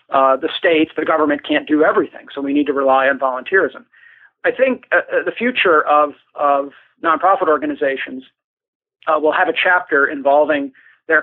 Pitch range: 145-185 Hz